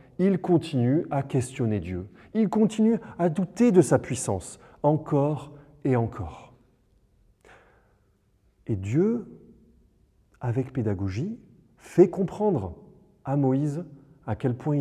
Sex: male